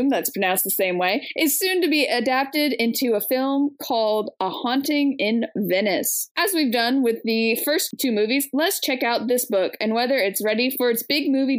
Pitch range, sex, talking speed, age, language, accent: 215-280 Hz, female, 200 wpm, 20-39, English, American